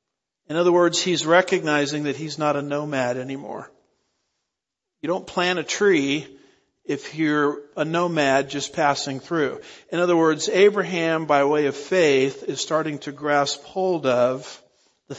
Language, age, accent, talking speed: English, 50-69, American, 150 wpm